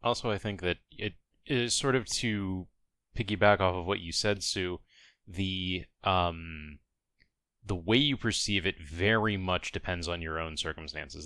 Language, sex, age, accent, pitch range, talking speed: English, male, 20-39, American, 85-110 Hz, 160 wpm